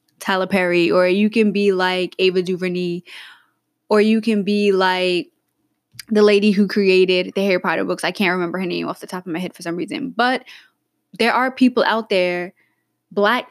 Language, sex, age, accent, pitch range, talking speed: English, female, 20-39, American, 180-205 Hz, 190 wpm